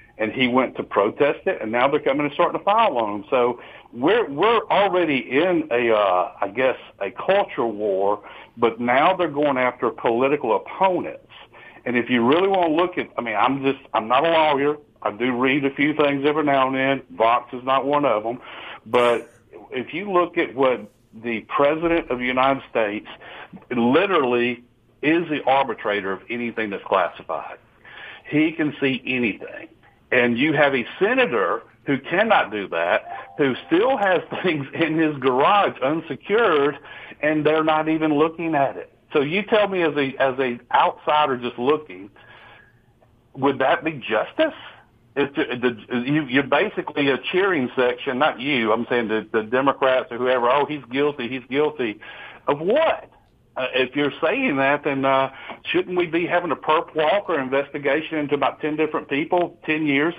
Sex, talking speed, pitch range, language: male, 175 wpm, 125-155 Hz, English